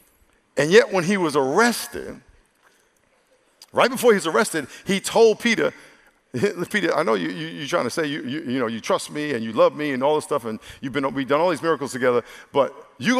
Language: English